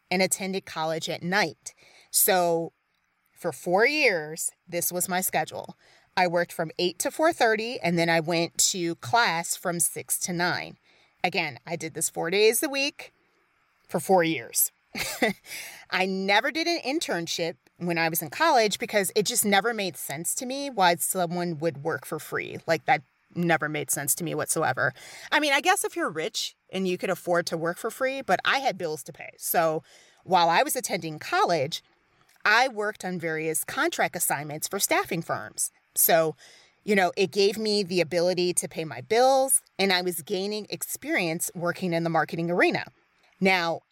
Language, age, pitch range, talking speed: English, 30-49, 170-225 Hz, 180 wpm